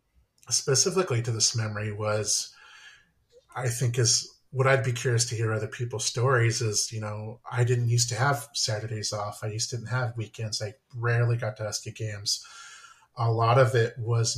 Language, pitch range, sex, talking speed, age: English, 115-130 Hz, male, 190 wpm, 30-49